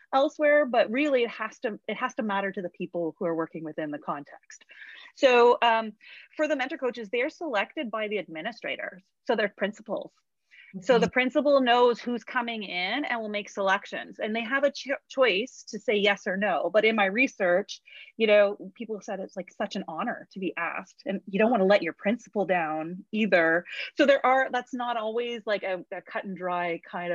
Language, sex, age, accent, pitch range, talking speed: English, female, 30-49, American, 185-245 Hz, 205 wpm